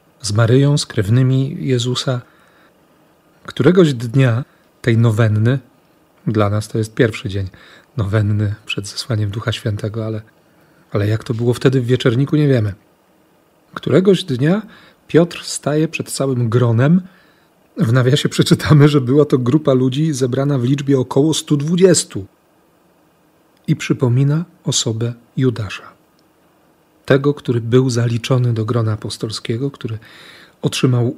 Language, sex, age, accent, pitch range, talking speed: Polish, male, 40-59, native, 115-150 Hz, 120 wpm